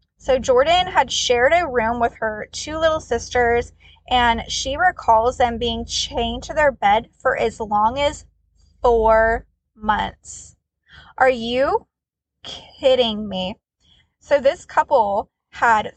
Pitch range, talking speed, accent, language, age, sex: 235-300 Hz, 130 wpm, American, English, 20-39, female